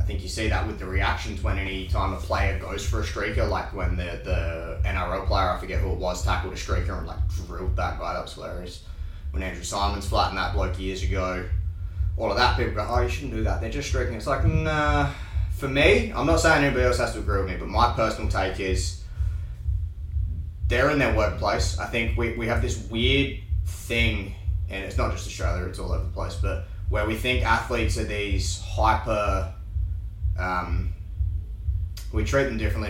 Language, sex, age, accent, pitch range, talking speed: English, male, 20-39, Australian, 85-100 Hz, 210 wpm